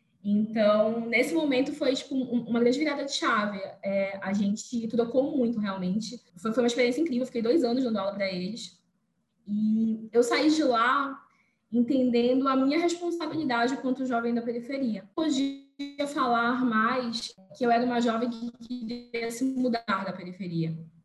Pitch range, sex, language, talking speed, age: 215-260 Hz, female, Portuguese, 160 wpm, 10-29